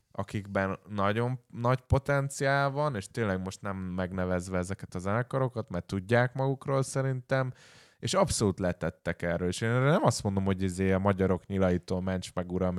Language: Hungarian